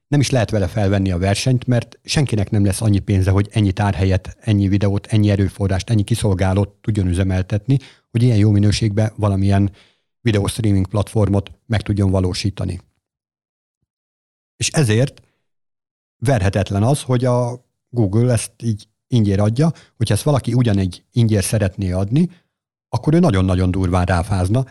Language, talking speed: Hungarian, 140 wpm